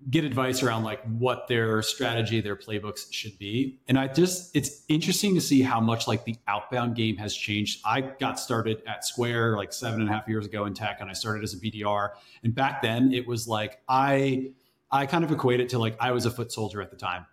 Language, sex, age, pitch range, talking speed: English, male, 30-49, 110-135 Hz, 235 wpm